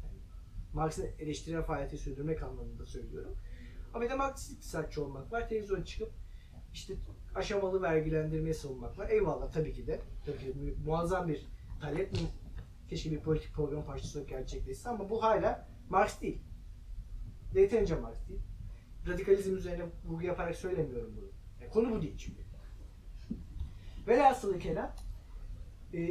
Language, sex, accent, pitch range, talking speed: Turkish, male, native, 130-205 Hz, 135 wpm